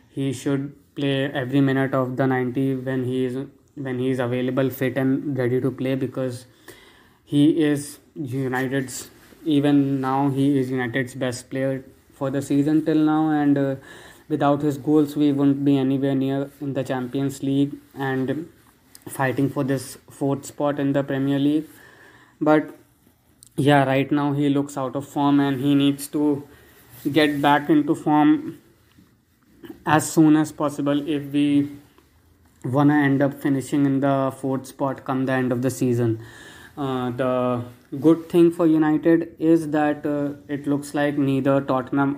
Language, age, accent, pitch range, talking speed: English, 20-39, Indian, 130-145 Hz, 160 wpm